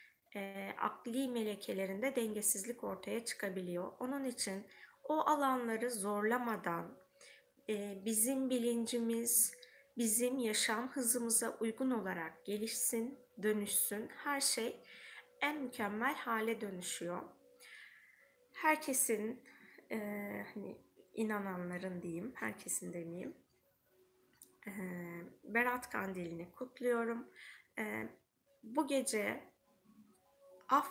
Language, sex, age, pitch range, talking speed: Turkish, female, 20-39, 205-255 Hz, 85 wpm